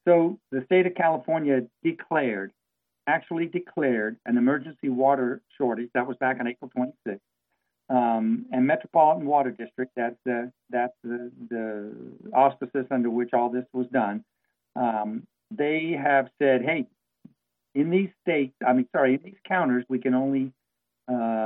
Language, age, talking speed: English, 60-79, 150 wpm